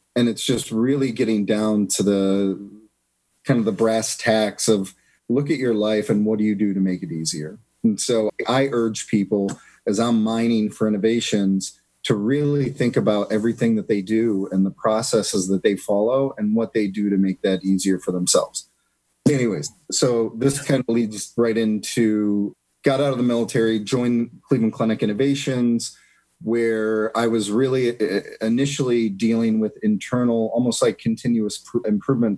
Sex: male